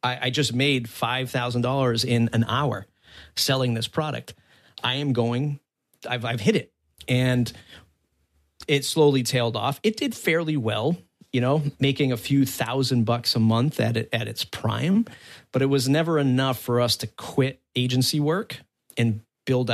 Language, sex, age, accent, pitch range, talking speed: English, male, 40-59, American, 115-140 Hz, 160 wpm